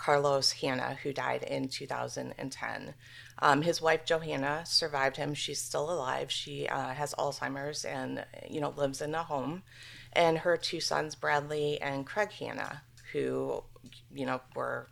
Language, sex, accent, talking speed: English, female, American, 165 wpm